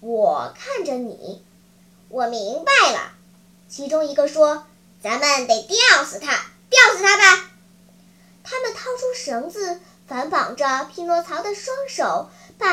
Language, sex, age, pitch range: Chinese, male, 10-29, 245-410 Hz